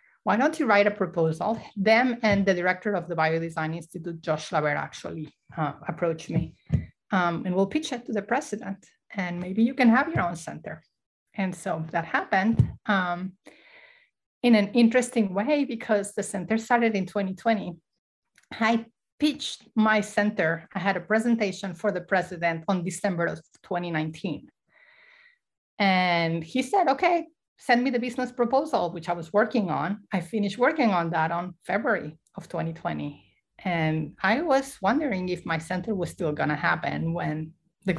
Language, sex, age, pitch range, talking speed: English, female, 30-49, 170-230 Hz, 160 wpm